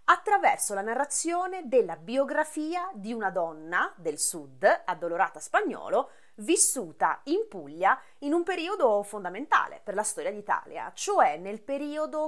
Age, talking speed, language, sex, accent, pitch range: 30-49, 125 wpm, Italian, female, native, 205-345 Hz